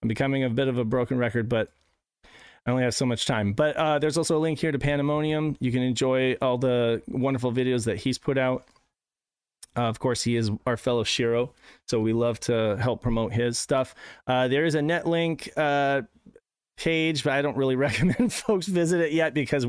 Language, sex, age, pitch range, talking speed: English, male, 30-49, 120-150 Hz, 205 wpm